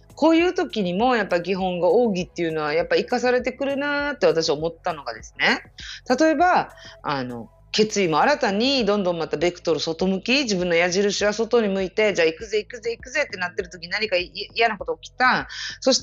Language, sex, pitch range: Japanese, female, 160-255 Hz